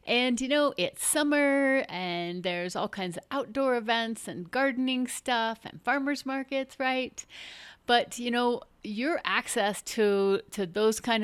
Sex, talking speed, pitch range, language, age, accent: female, 150 wpm, 175-240 Hz, English, 30-49, American